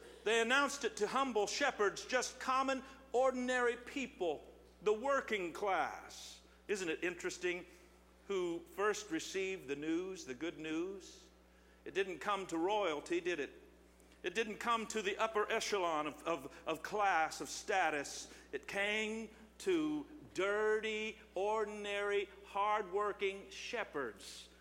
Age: 50-69